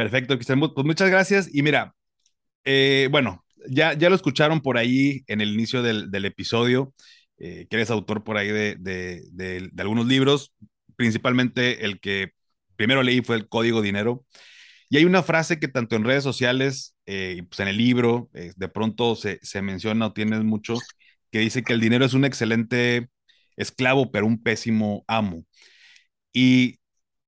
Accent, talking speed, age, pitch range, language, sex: Mexican, 170 wpm, 30-49, 105-130 Hz, Spanish, male